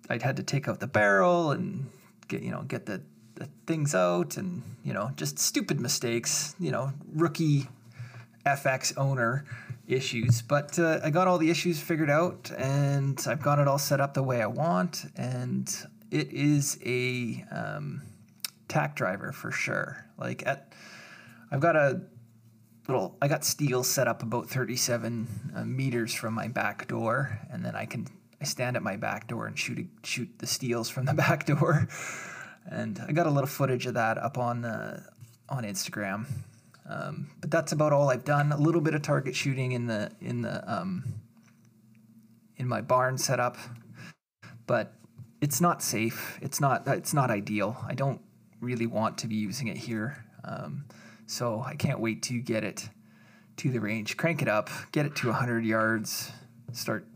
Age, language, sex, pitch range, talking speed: 20-39, English, male, 115-145 Hz, 180 wpm